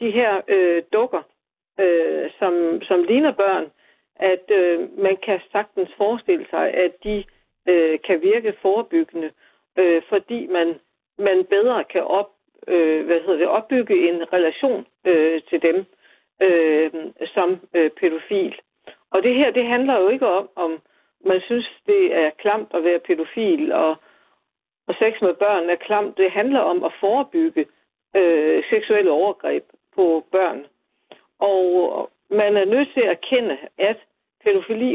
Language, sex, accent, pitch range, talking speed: Danish, female, native, 175-280 Hz, 145 wpm